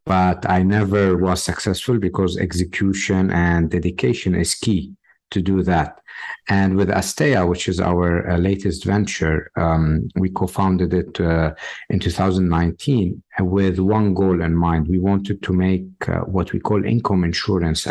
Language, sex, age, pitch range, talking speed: English, male, 50-69, 90-105 Hz, 145 wpm